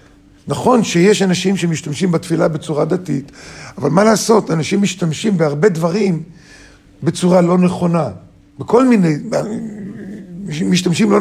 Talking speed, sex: 110 wpm, male